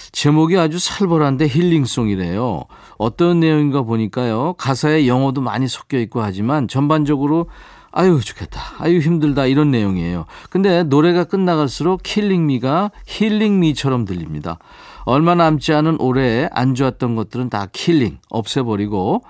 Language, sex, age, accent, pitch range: Korean, male, 40-59, native, 110-170 Hz